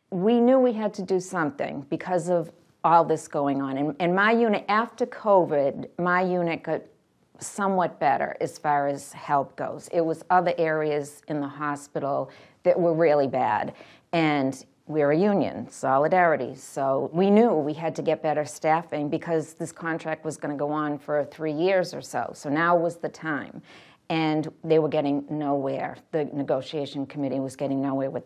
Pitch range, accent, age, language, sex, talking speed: 150-185 Hz, American, 50-69, English, female, 180 wpm